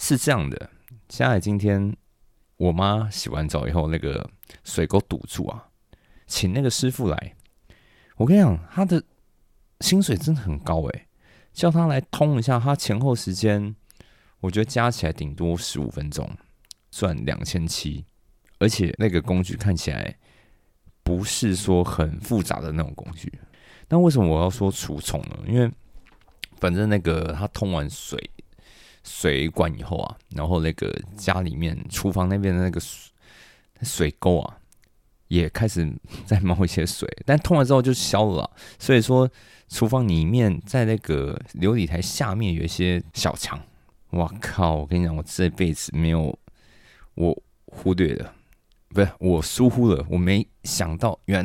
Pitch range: 85-115 Hz